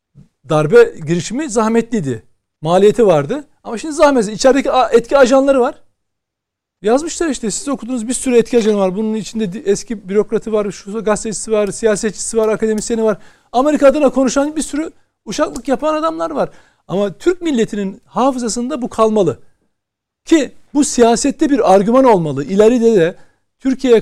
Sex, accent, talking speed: male, native, 140 wpm